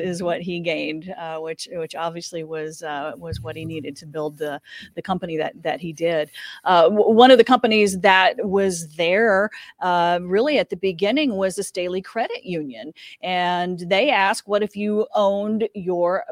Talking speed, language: 185 wpm, English